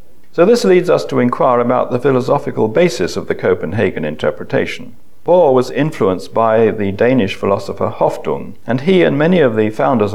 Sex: male